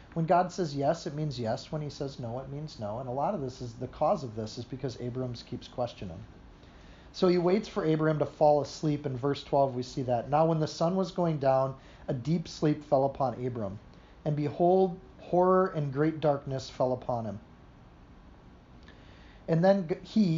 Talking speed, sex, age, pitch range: 200 wpm, male, 40-59, 130-170 Hz